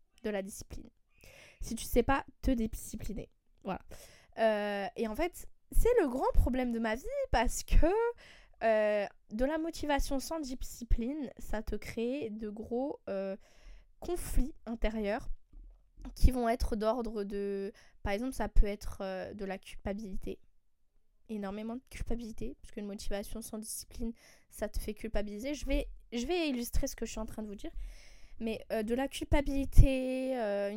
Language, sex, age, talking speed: French, female, 20-39, 165 wpm